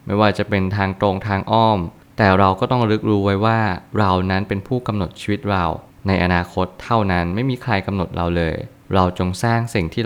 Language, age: Thai, 20-39